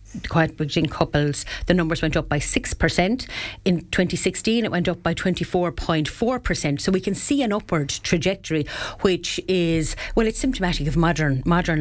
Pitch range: 155-185 Hz